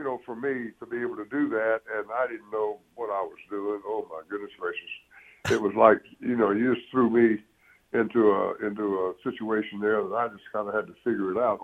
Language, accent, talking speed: English, American, 240 wpm